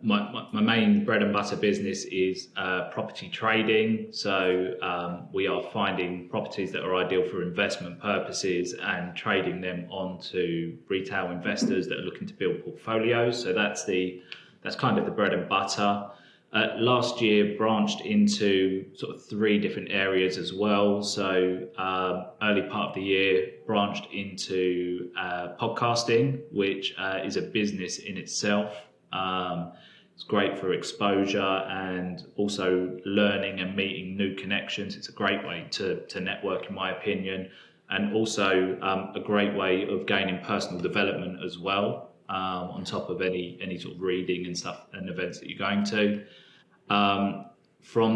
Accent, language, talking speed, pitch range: British, English, 160 wpm, 90-105 Hz